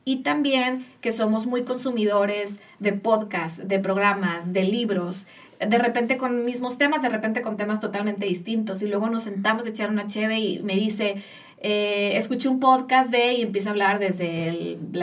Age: 30-49